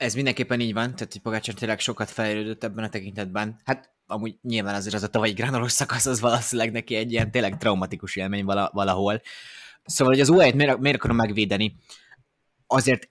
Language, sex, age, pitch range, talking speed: Hungarian, male, 20-39, 110-135 Hz, 190 wpm